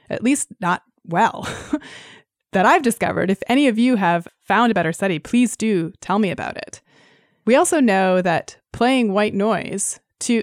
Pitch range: 180-235 Hz